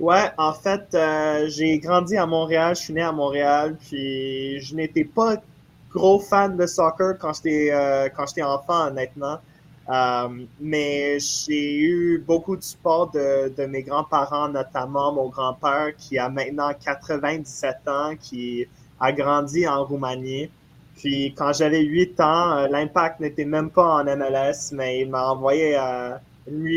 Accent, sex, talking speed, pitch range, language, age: Canadian, male, 155 wpm, 135-160 Hz, French, 20-39